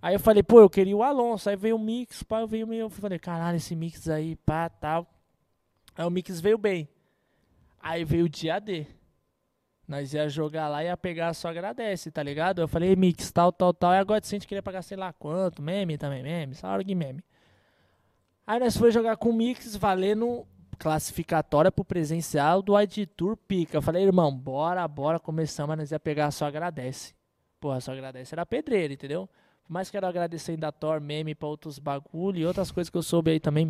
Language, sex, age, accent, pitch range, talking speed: Portuguese, male, 20-39, Brazilian, 155-200 Hz, 205 wpm